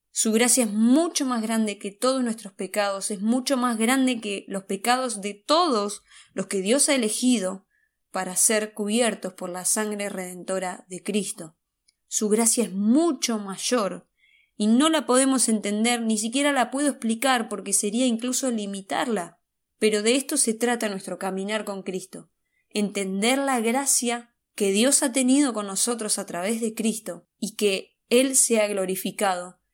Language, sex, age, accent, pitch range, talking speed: Spanish, female, 20-39, Argentinian, 200-245 Hz, 160 wpm